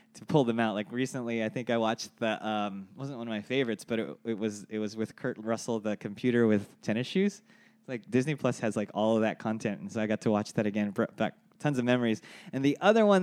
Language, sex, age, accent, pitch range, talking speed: English, male, 20-39, American, 110-165 Hz, 265 wpm